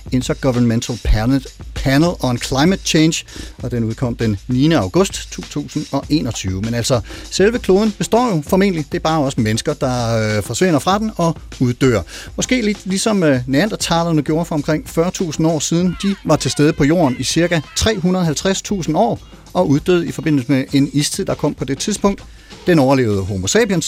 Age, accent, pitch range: 40-59, native, 125-175 Hz